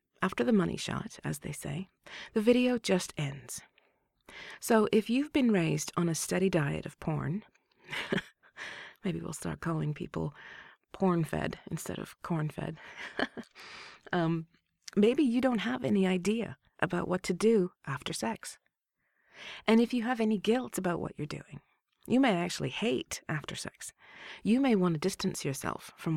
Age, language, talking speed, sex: 30-49, English, 155 wpm, female